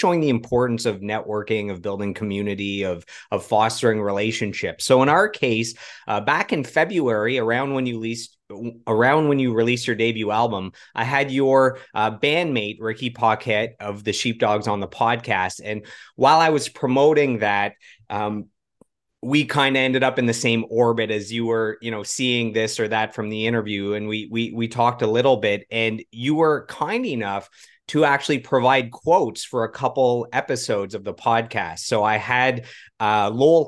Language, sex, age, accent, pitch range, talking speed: English, male, 30-49, American, 105-125 Hz, 180 wpm